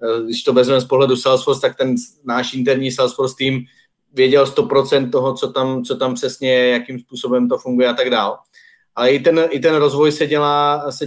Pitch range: 125-140 Hz